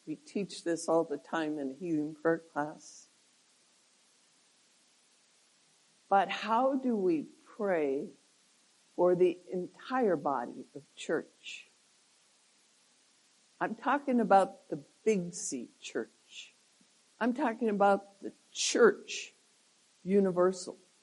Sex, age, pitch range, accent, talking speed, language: female, 60-79, 165-220 Hz, American, 95 wpm, English